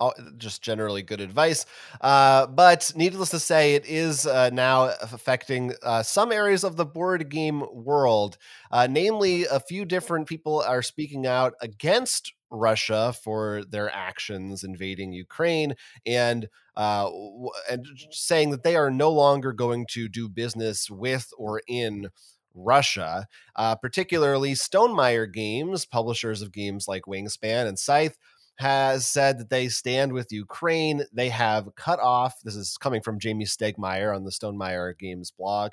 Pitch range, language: 110-145 Hz, English